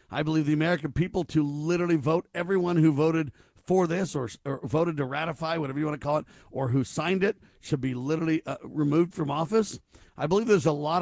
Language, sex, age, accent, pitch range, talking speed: English, male, 50-69, American, 135-170 Hz, 220 wpm